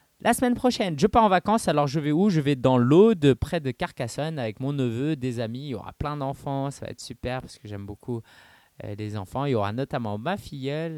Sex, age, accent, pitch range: male, 20-39, French, 115-155 Hz